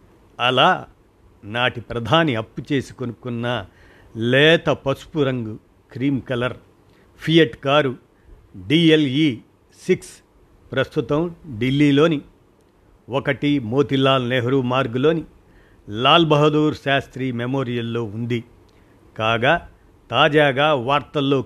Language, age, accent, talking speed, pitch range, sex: Telugu, 50-69, native, 80 wpm, 115-145 Hz, male